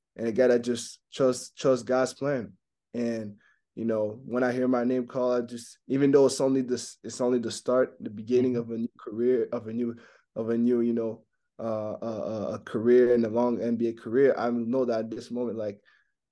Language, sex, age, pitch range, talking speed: English, male, 20-39, 115-130 Hz, 215 wpm